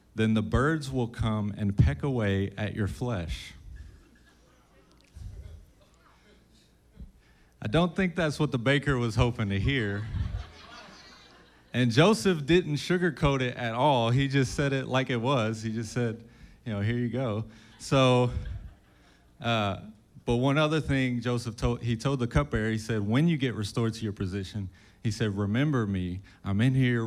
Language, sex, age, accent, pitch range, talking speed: English, male, 30-49, American, 95-120 Hz, 160 wpm